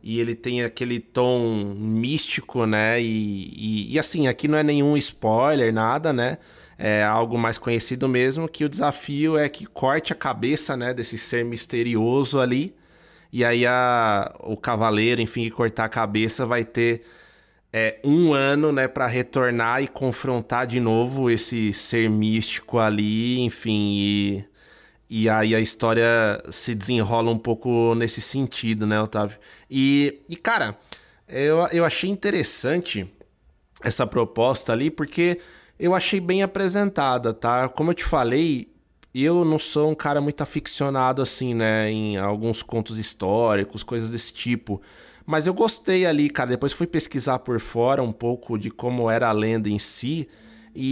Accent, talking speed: Brazilian, 155 wpm